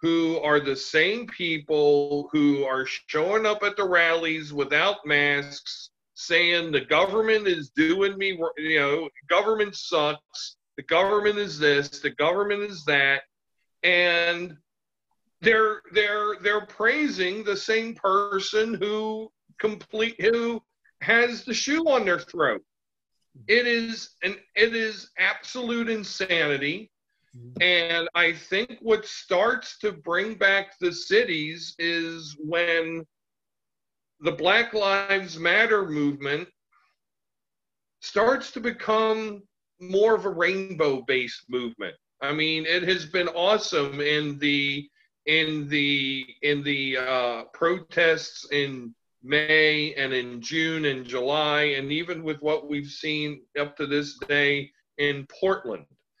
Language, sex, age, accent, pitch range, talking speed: English, male, 40-59, American, 145-210 Hz, 120 wpm